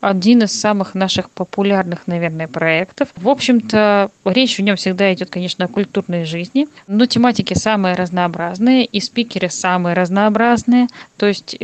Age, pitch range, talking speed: 20-39, 185-225 Hz, 145 wpm